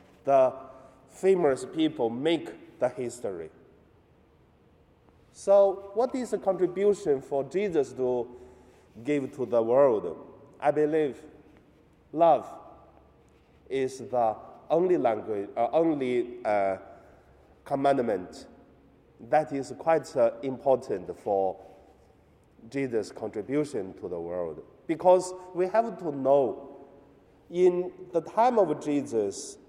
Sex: male